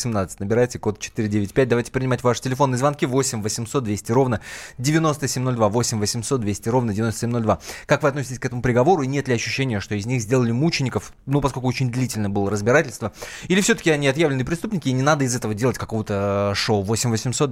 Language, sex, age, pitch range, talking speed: Russian, male, 20-39, 110-140 Hz, 190 wpm